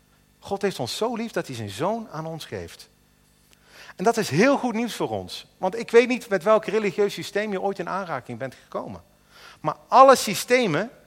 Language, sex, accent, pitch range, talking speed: Dutch, male, Dutch, 155-230 Hz, 200 wpm